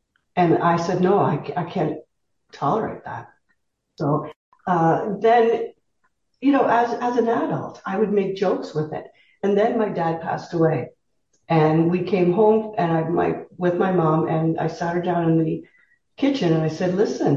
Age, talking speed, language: 50-69, 180 wpm, English